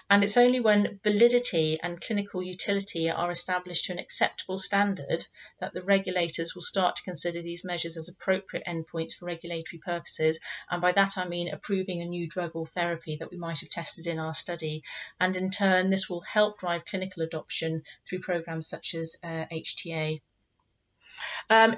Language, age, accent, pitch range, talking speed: English, 40-59, British, 170-200 Hz, 175 wpm